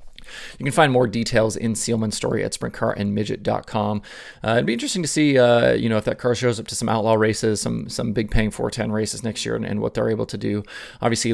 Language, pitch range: English, 105-120 Hz